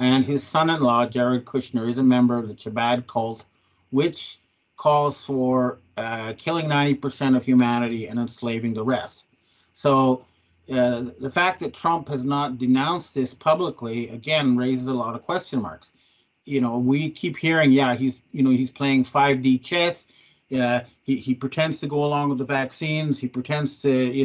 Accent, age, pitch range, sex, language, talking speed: American, 40-59, 120-150 Hz, male, English, 175 wpm